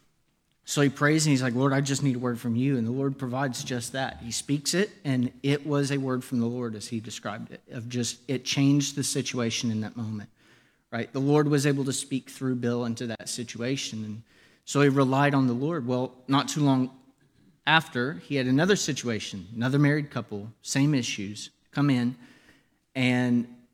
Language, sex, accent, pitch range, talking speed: English, male, American, 115-145 Hz, 200 wpm